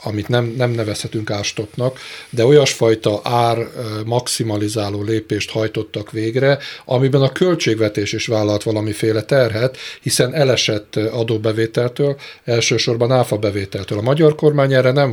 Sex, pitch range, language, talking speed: male, 105-130 Hz, Hungarian, 115 wpm